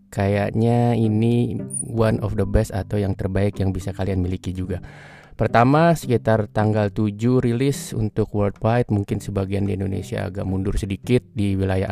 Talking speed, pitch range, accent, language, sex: 150 wpm, 100-120 Hz, native, Indonesian, male